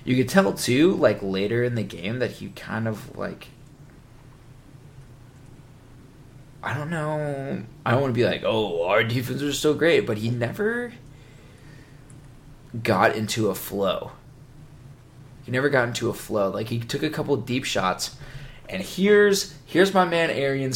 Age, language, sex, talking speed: 20-39, English, male, 160 wpm